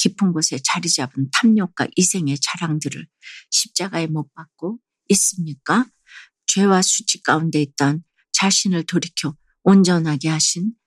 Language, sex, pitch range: Korean, female, 155-195 Hz